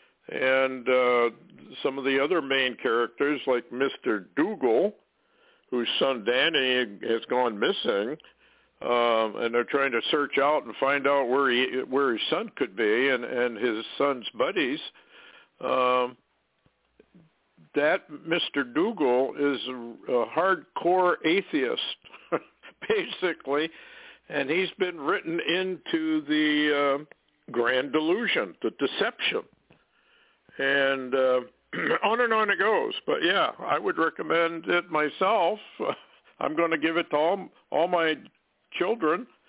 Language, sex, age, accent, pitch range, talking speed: English, male, 60-79, American, 130-185 Hz, 125 wpm